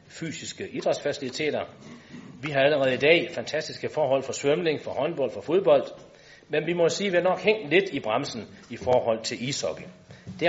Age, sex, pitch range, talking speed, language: 40-59, male, 135-185 Hz, 175 wpm, Danish